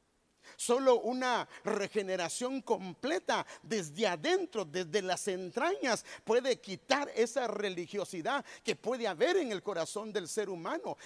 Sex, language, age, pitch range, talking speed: male, English, 50-69, 185-265 Hz, 120 wpm